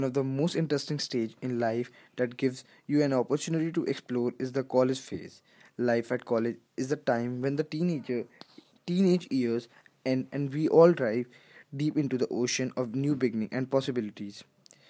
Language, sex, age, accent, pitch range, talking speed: English, male, 20-39, Indian, 125-150 Hz, 175 wpm